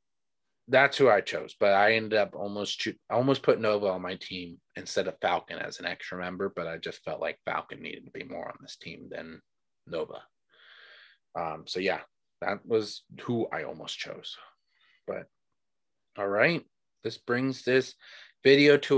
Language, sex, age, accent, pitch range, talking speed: English, male, 30-49, American, 115-130 Hz, 175 wpm